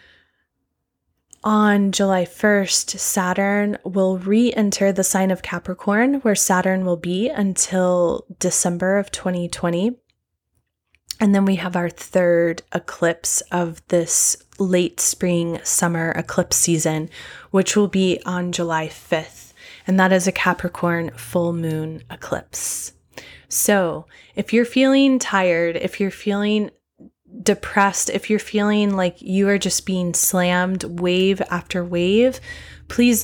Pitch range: 175-205 Hz